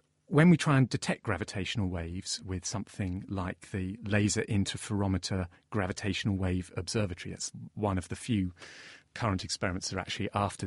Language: English